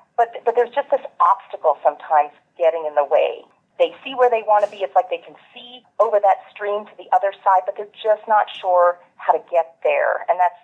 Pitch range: 170-240 Hz